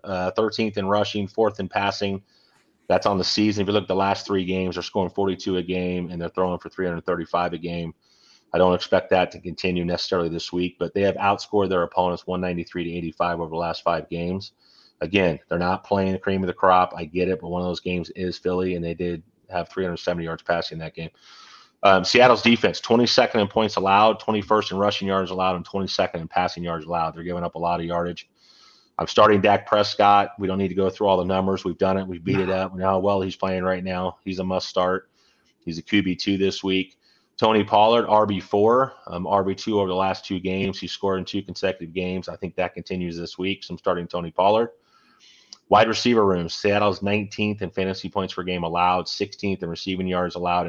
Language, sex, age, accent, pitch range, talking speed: English, male, 30-49, American, 90-100 Hz, 220 wpm